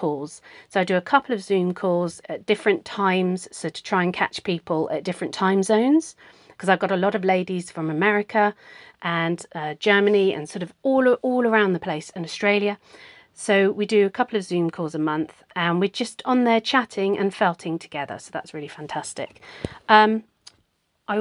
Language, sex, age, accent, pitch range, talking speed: English, female, 40-59, British, 170-215 Hz, 190 wpm